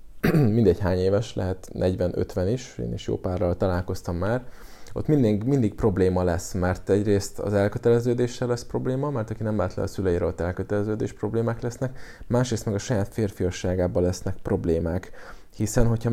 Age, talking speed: 20-39, 160 wpm